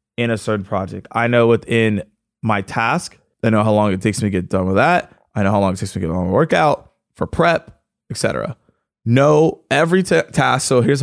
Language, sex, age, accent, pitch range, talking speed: English, male, 20-39, American, 105-140 Hz, 225 wpm